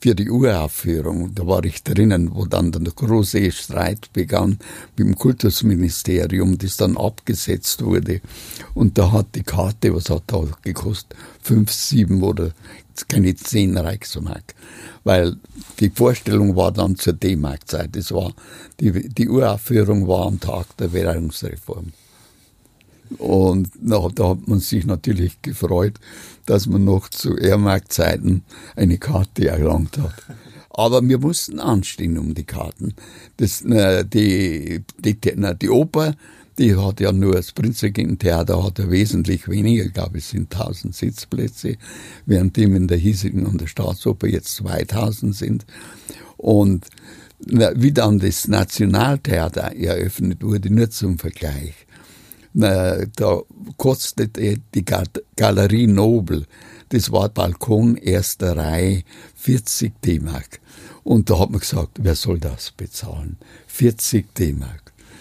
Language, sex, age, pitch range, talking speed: German, male, 60-79, 90-110 Hz, 135 wpm